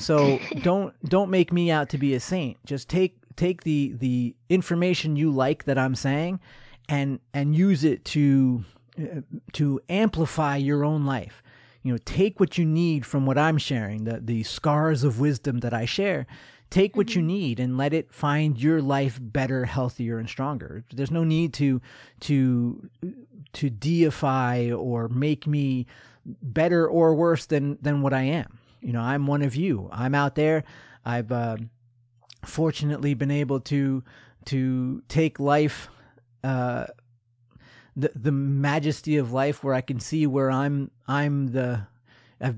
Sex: male